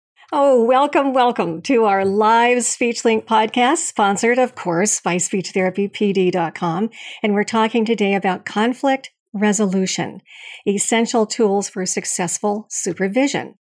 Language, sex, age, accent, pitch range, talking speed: English, female, 50-69, American, 190-230 Hz, 110 wpm